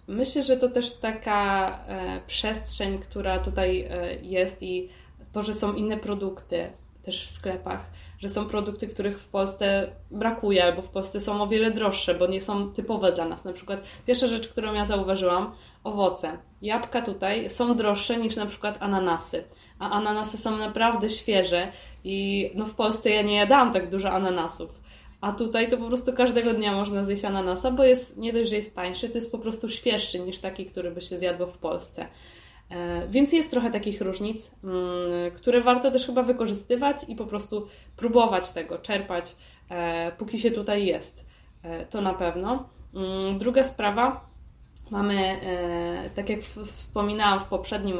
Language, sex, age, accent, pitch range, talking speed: Polish, female, 20-39, native, 185-225 Hz, 160 wpm